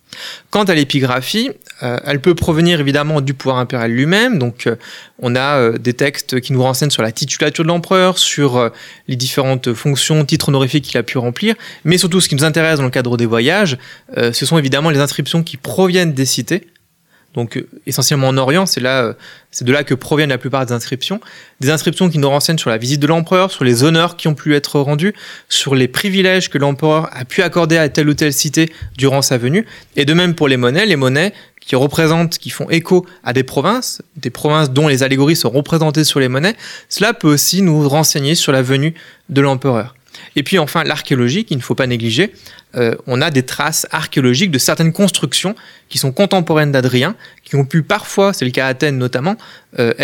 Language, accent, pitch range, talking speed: French, French, 130-170 Hz, 210 wpm